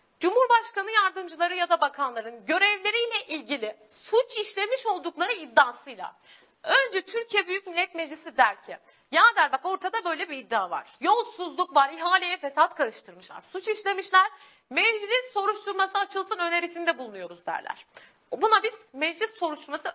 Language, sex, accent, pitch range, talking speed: Turkish, female, native, 280-415 Hz, 130 wpm